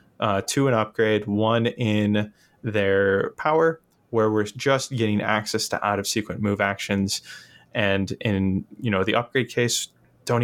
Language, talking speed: English, 155 wpm